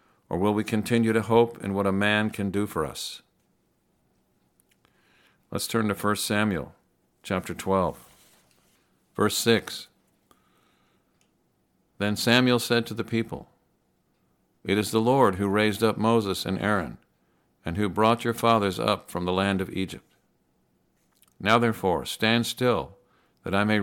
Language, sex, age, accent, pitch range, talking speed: English, male, 50-69, American, 95-115 Hz, 145 wpm